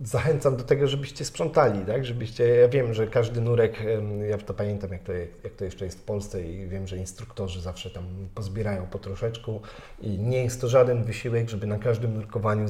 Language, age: Polish, 40-59